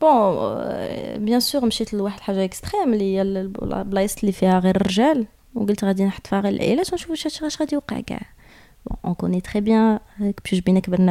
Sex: female